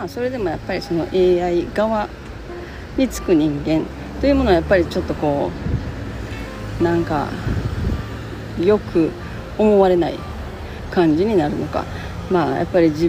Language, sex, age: Japanese, female, 40-59